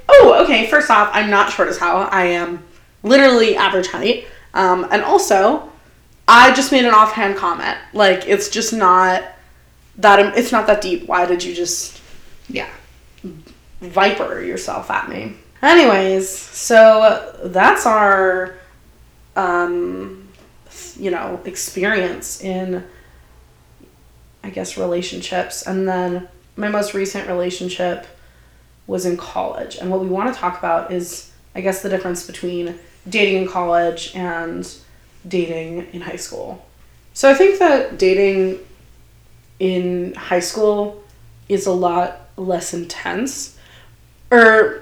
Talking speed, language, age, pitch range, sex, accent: 130 wpm, English, 20-39, 175-235 Hz, female, American